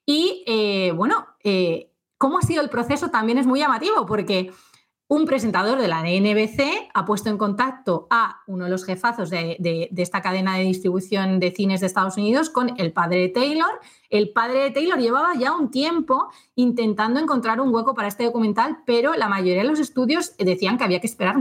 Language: Spanish